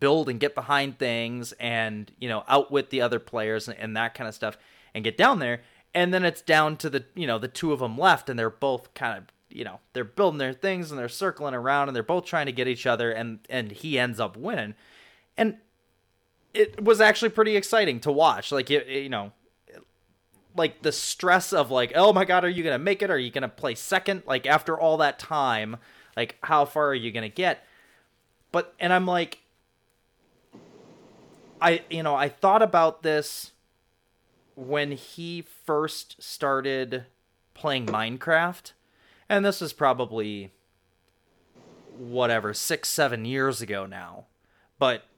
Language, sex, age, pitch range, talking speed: English, male, 20-39, 115-160 Hz, 180 wpm